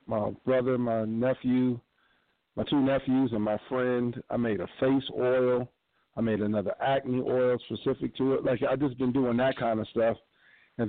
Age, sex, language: 50-69, male, English